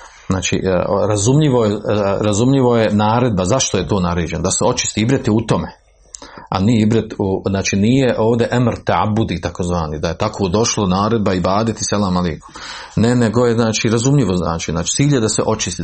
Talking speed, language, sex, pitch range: 180 wpm, Croatian, male, 95-115 Hz